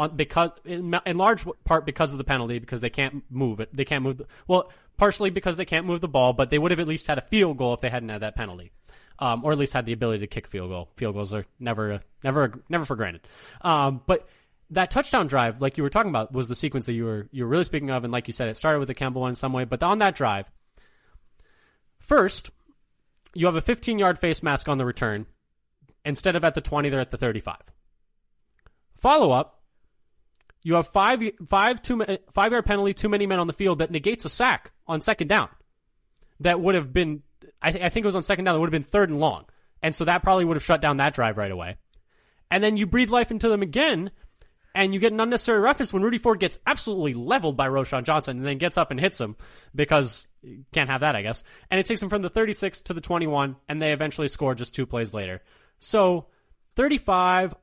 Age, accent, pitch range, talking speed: 20-39, American, 130-185 Hz, 235 wpm